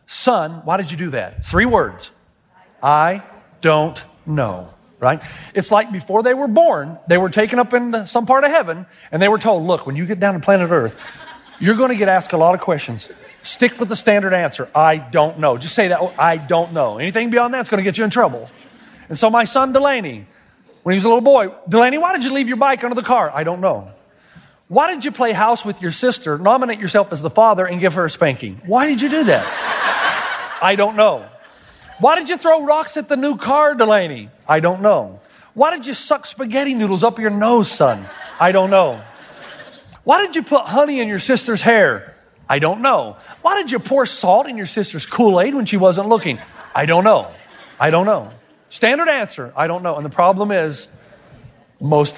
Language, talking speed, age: English, 215 wpm, 40-59